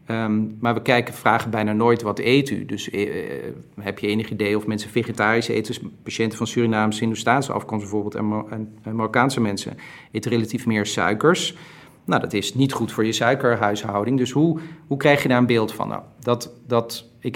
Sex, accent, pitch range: male, Dutch, 110-130 Hz